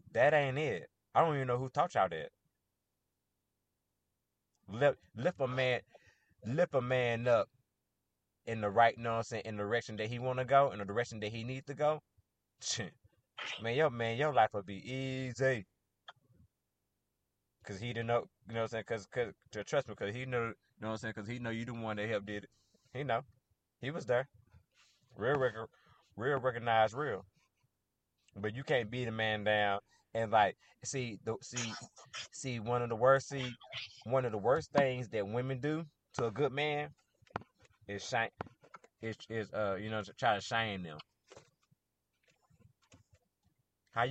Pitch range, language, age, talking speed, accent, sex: 110-130 Hz, English, 30-49, 175 wpm, American, male